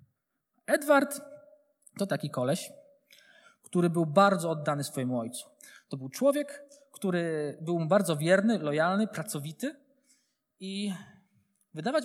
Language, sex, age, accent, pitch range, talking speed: Polish, male, 20-39, native, 170-255 Hz, 110 wpm